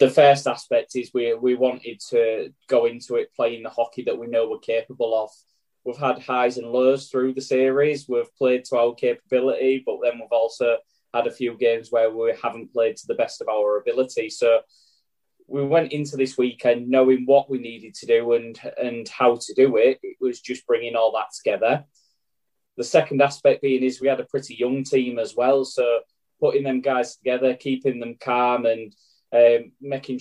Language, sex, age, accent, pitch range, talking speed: English, male, 10-29, British, 120-140 Hz, 195 wpm